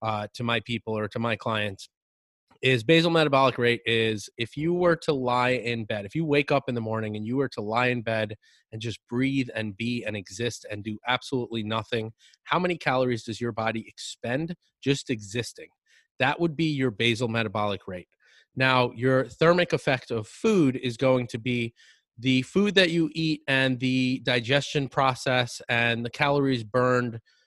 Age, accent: 30-49, American